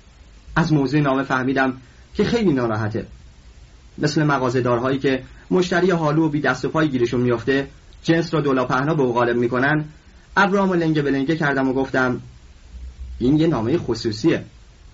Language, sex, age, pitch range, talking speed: Persian, male, 30-49, 115-170 Hz, 135 wpm